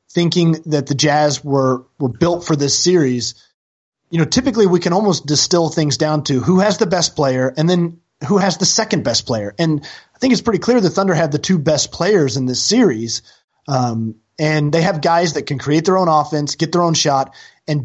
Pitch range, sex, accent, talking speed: 140-180 Hz, male, American, 220 wpm